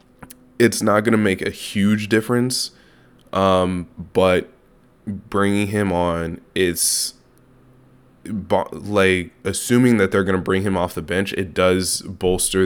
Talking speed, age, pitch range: 135 wpm, 20-39, 85-100 Hz